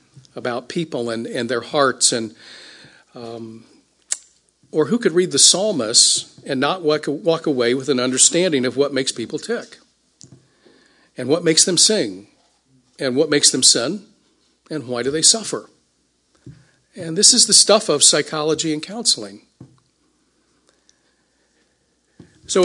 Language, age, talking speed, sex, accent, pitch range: English, 50-69, 140 wpm, male, American, 125-180 Hz